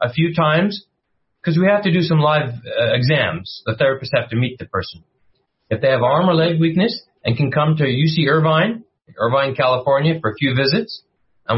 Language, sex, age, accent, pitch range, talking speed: English, male, 40-59, American, 135-175 Hz, 200 wpm